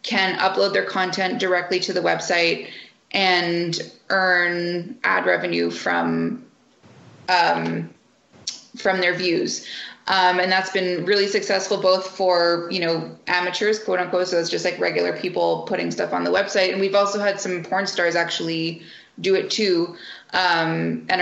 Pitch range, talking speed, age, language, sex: 170-195 Hz, 155 wpm, 20-39, English, female